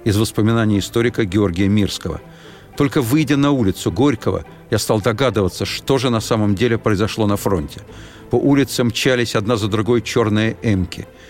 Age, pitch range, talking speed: 50-69, 100-125 Hz, 155 wpm